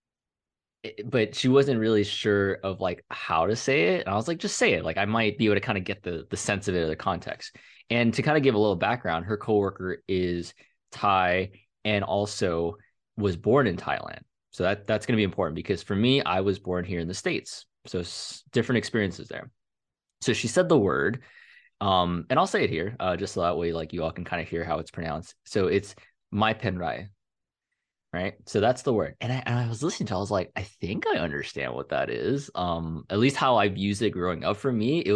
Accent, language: American, English